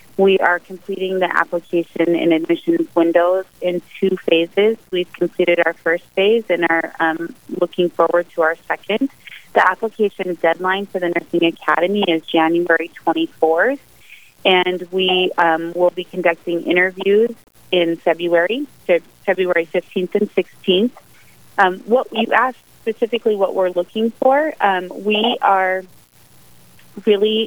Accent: American